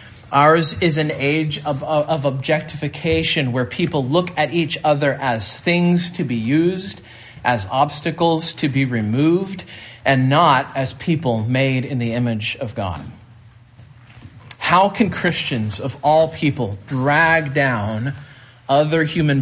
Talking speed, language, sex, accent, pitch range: 135 wpm, English, male, American, 120-160 Hz